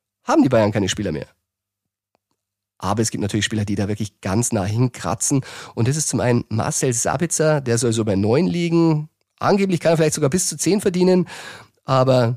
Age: 30-49